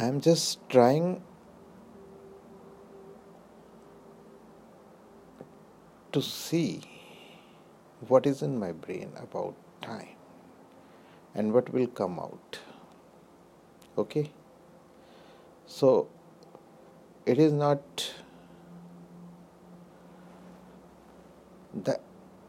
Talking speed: 65 wpm